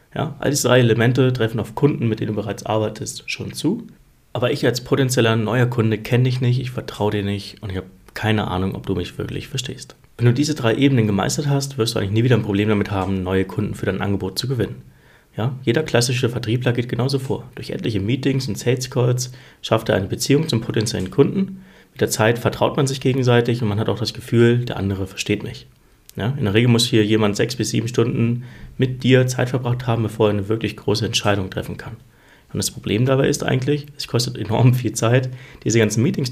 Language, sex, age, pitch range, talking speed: German, male, 30-49, 110-135 Hz, 220 wpm